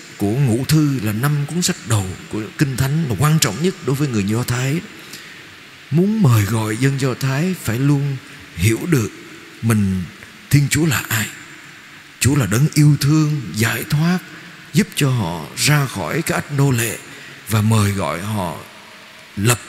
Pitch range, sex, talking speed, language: 115-155 Hz, male, 170 wpm, Vietnamese